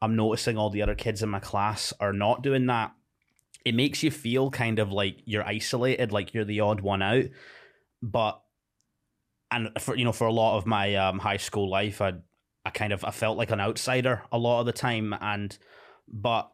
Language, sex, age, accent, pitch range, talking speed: English, male, 20-39, British, 100-120 Hz, 210 wpm